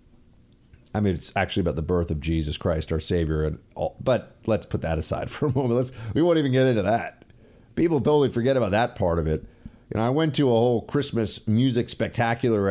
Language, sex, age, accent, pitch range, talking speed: English, male, 30-49, American, 105-160 Hz, 220 wpm